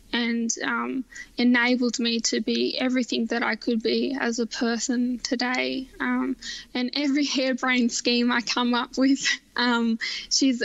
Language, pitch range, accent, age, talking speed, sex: English, 235-255 Hz, Australian, 10-29, 150 wpm, female